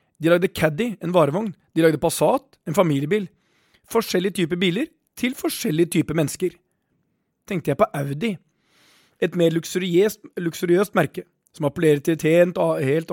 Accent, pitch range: Swedish, 160-210 Hz